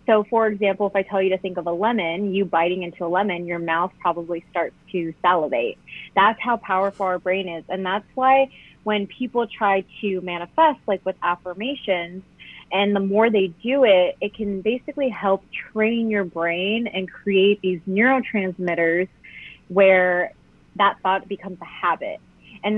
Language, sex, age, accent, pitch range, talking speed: English, female, 30-49, American, 180-215 Hz, 170 wpm